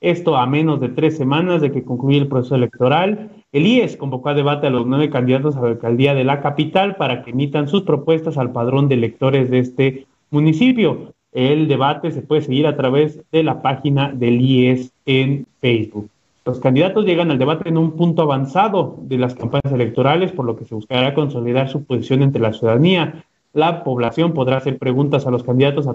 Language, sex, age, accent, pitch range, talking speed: Spanish, male, 30-49, Mexican, 125-155 Hz, 200 wpm